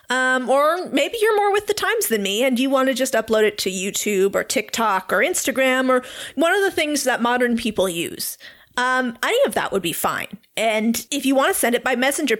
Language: English